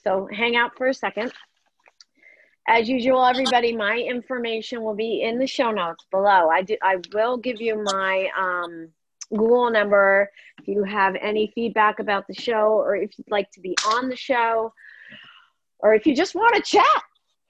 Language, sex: English, female